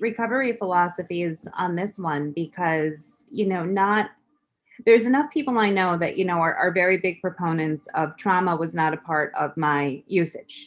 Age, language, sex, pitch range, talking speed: 30-49, English, female, 165-205 Hz, 175 wpm